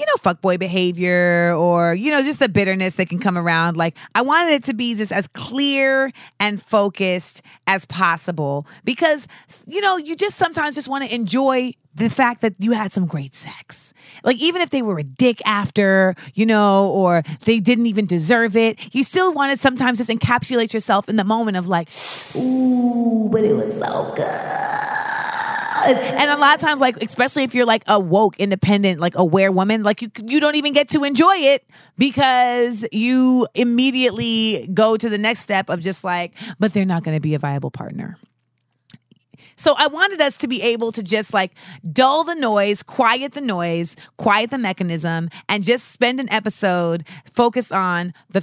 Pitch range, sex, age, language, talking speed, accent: 165-250 Hz, female, 30-49, English, 190 wpm, American